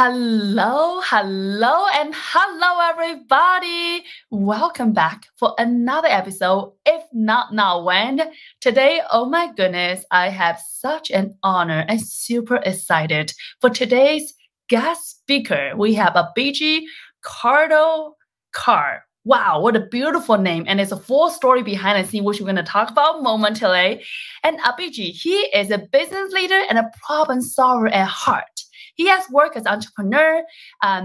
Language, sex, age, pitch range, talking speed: English, female, 20-39, 205-310 Hz, 145 wpm